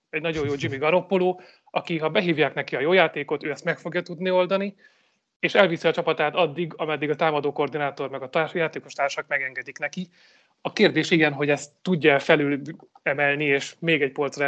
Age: 30-49